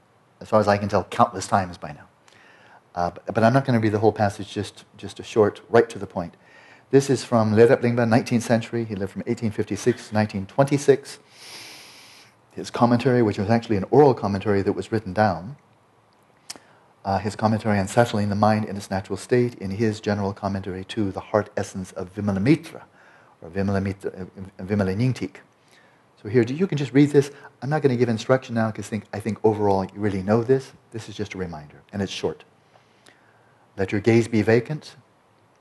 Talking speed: 185 wpm